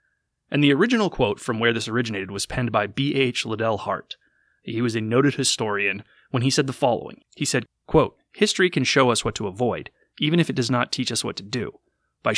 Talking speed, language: 225 wpm, English